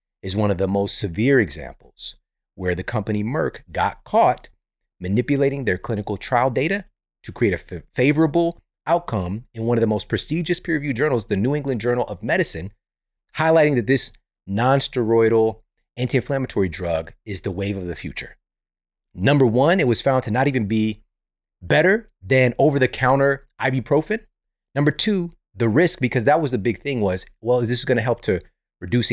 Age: 30-49